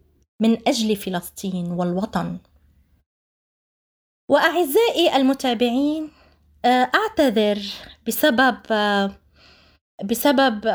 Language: Arabic